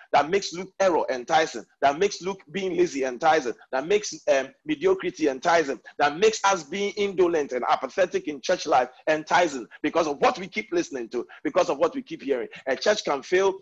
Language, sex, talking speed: English, male, 195 wpm